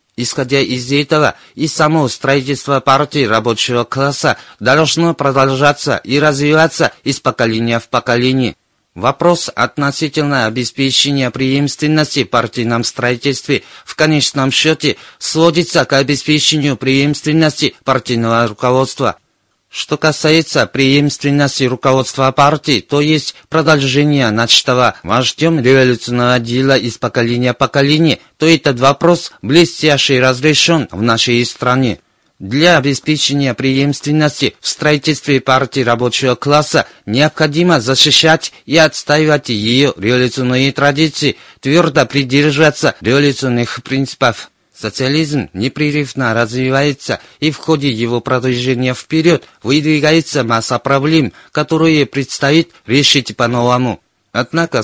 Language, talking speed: Russian, 100 wpm